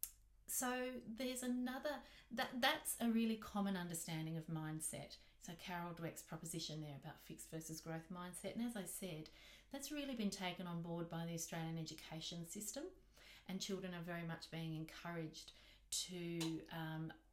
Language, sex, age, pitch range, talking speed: English, female, 30-49, 160-195 Hz, 155 wpm